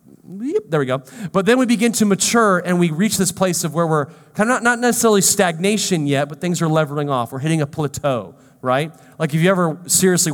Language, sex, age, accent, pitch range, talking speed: English, male, 30-49, American, 160-225 Hz, 225 wpm